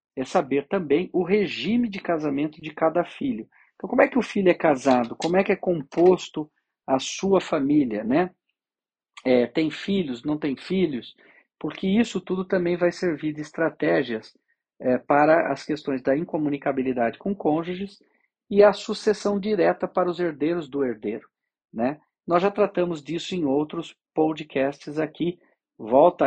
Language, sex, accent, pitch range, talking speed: Portuguese, male, Brazilian, 130-185 Hz, 155 wpm